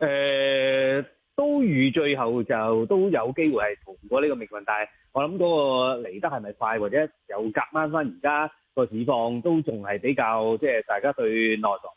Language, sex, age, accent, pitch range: Chinese, male, 20-39, native, 115-155 Hz